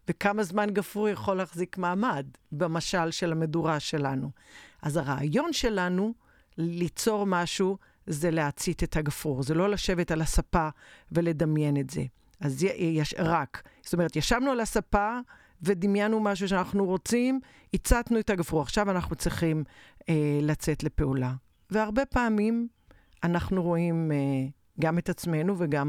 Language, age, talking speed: Hebrew, 50-69, 130 wpm